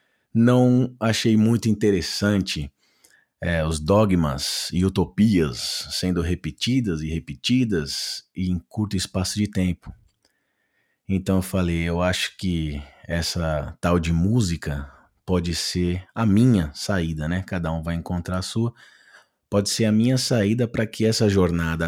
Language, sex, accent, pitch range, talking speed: Portuguese, male, Brazilian, 90-110 Hz, 130 wpm